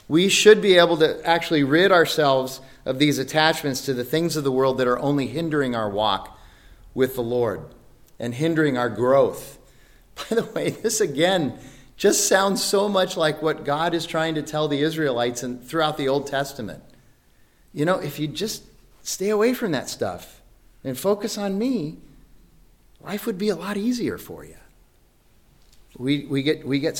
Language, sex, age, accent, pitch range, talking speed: English, male, 40-59, American, 135-165 Hz, 175 wpm